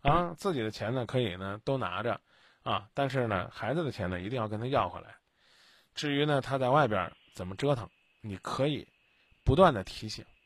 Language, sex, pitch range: Chinese, male, 105-145 Hz